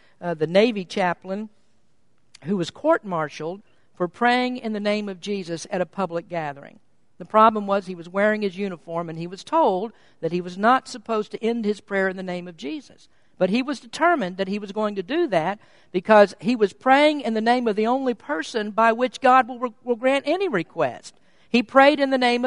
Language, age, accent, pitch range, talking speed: English, 50-69, American, 195-260 Hz, 210 wpm